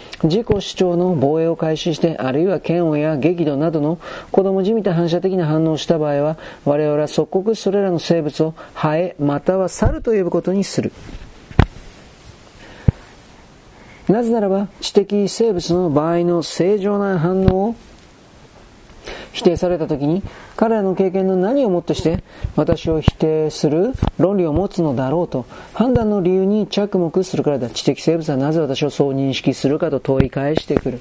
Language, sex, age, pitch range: Japanese, male, 40-59, 150-185 Hz